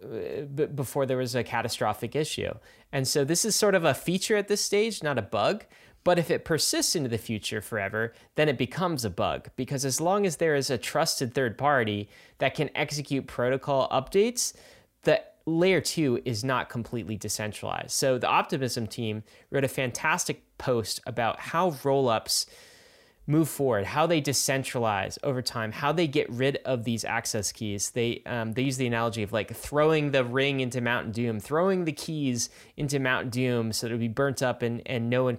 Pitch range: 115-145 Hz